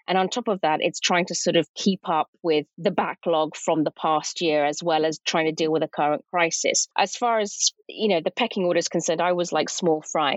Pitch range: 165-200 Hz